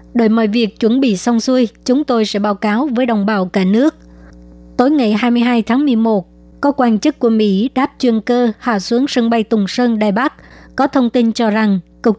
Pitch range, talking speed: 215-245 Hz, 215 wpm